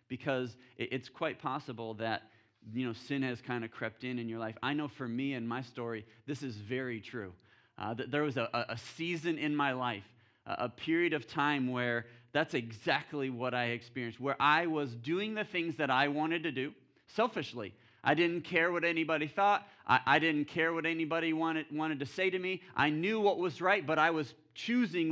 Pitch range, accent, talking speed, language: 120-155 Hz, American, 205 wpm, English